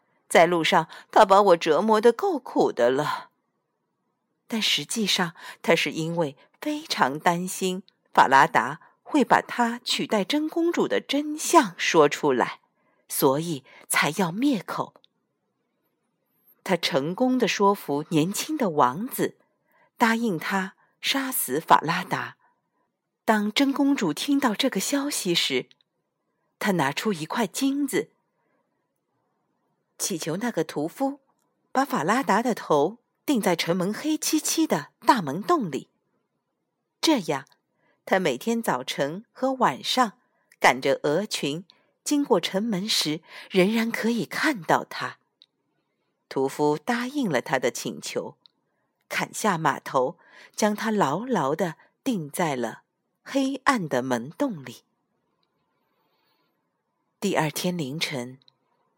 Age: 50-69